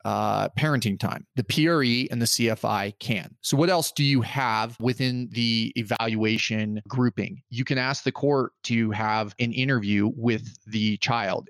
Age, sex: 30-49, male